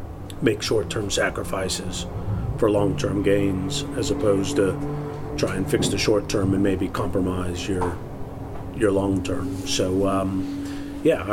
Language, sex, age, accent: English, male, 40-59, American